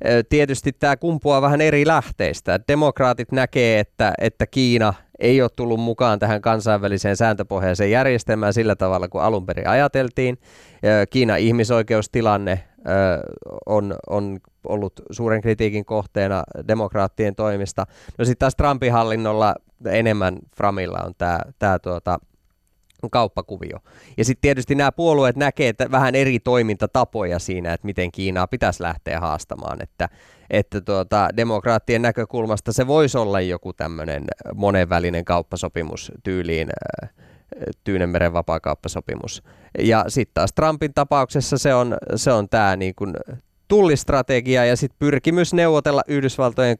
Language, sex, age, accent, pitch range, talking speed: Finnish, male, 20-39, native, 95-125 Hz, 125 wpm